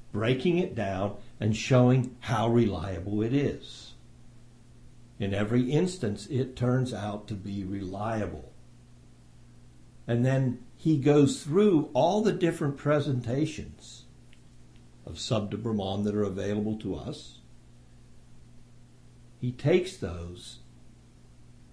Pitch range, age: 100-125 Hz, 60-79